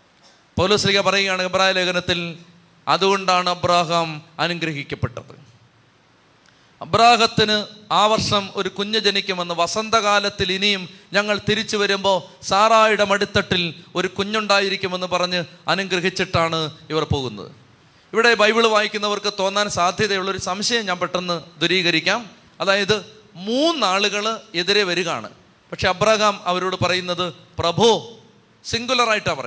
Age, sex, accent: 30-49, male, native